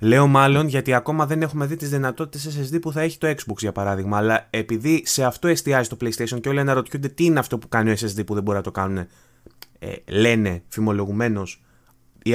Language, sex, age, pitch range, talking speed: Greek, male, 20-39, 115-160 Hz, 215 wpm